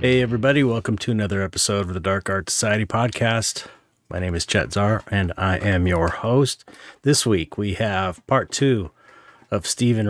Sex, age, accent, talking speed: male, 30-49, American, 180 wpm